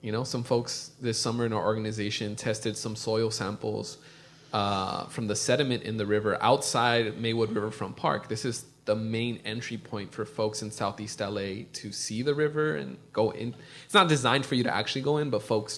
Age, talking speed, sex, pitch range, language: 20-39, 200 wpm, male, 110-145 Hz, English